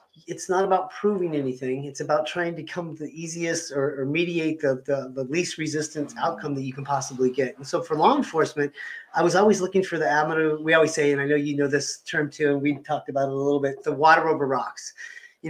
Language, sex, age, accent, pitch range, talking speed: English, male, 30-49, American, 140-175 Hz, 240 wpm